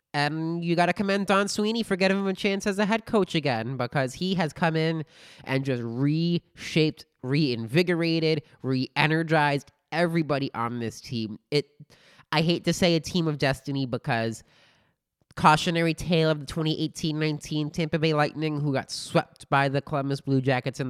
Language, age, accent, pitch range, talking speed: English, 20-39, American, 125-165 Hz, 165 wpm